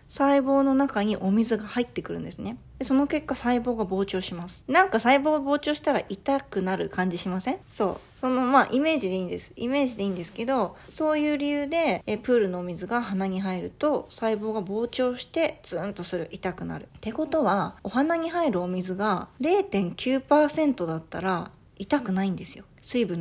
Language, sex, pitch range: Japanese, female, 190-270 Hz